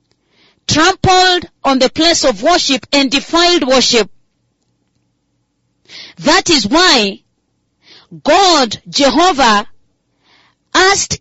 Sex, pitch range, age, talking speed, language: female, 245-345 Hz, 30-49, 80 wpm, English